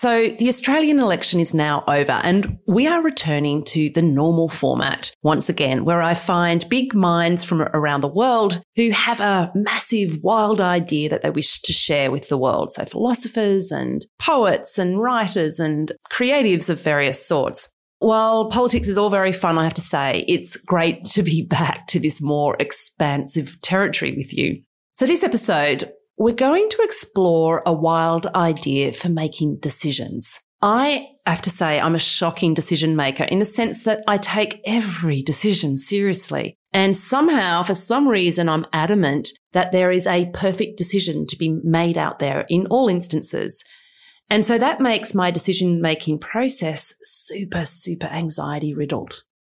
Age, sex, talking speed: 30-49, female, 165 wpm